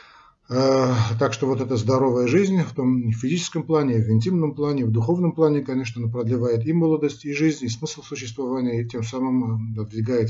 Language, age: Russian, 40-59